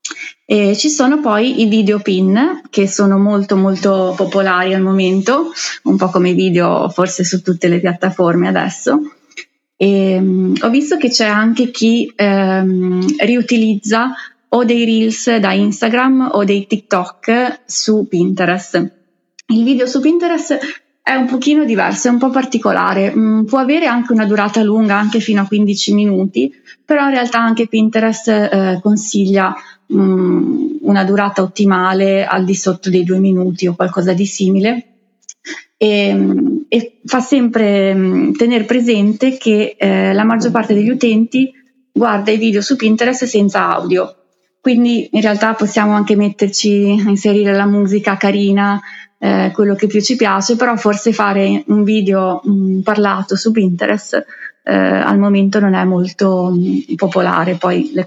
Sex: female